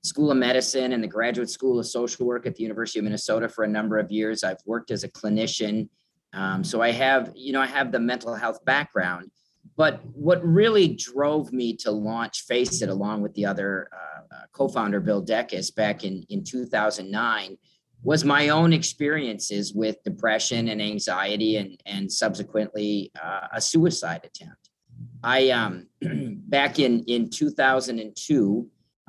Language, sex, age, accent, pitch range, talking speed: English, male, 40-59, American, 105-130 Hz, 165 wpm